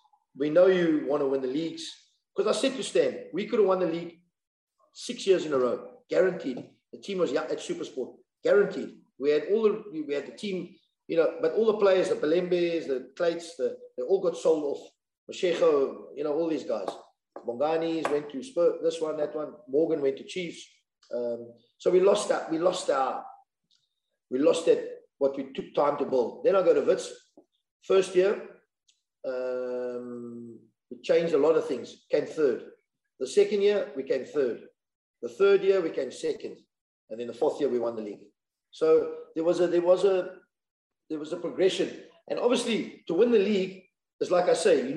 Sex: male